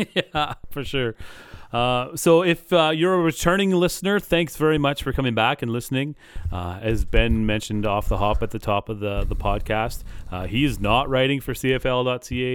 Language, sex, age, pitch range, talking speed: English, male, 30-49, 100-125 Hz, 190 wpm